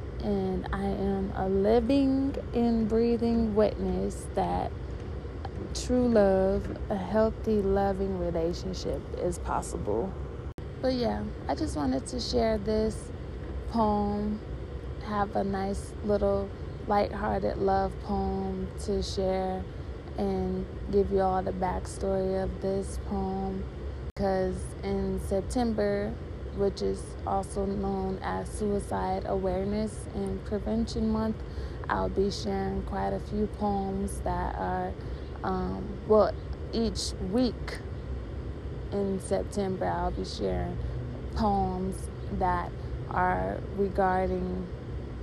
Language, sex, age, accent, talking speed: English, female, 20-39, American, 105 wpm